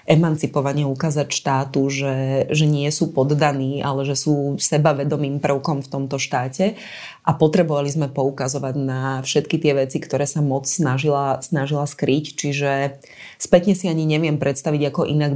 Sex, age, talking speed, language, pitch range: female, 30-49, 150 wpm, Slovak, 140-155 Hz